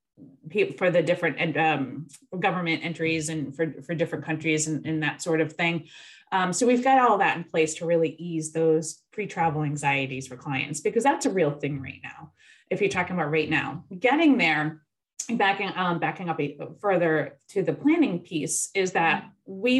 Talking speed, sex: 180 wpm, female